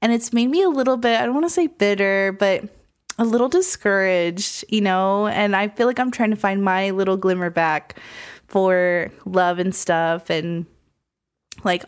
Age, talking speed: 20-39, 185 wpm